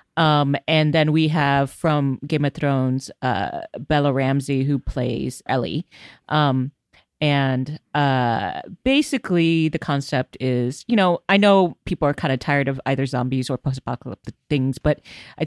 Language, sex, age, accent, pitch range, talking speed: English, female, 30-49, American, 135-165 Hz, 150 wpm